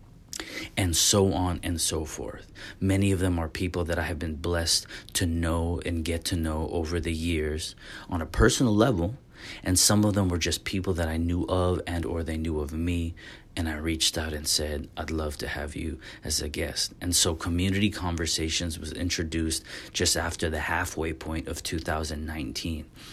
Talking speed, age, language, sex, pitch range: 190 wpm, 30-49, English, male, 80-95 Hz